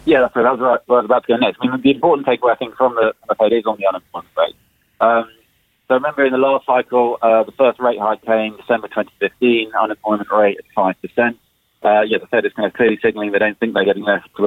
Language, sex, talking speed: English, male, 260 wpm